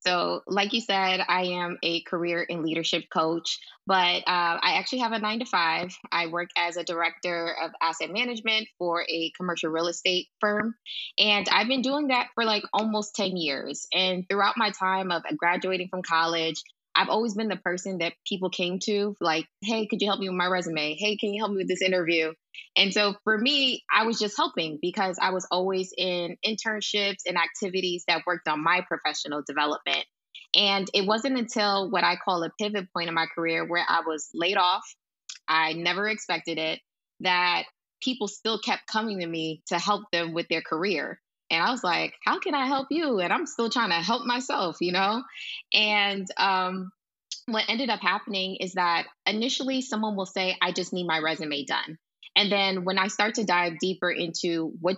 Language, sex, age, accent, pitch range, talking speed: English, female, 20-39, American, 170-210 Hz, 200 wpm